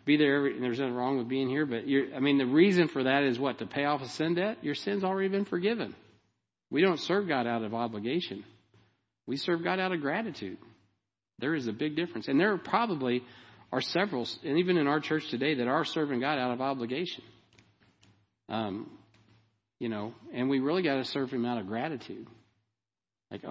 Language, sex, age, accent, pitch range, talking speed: English, male, 50-69, American, 115-175 Hz, 205 wpm